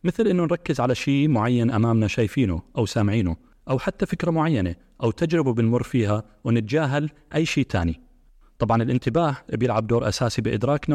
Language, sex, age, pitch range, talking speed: Arabic, male, 30-49, 105-140 Hz, 155 wpm